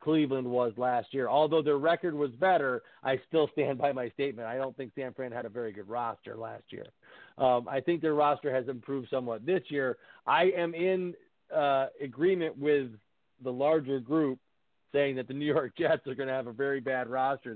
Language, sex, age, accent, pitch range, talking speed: English, male, 40-59, American, 130-150 Hz, 205 wpm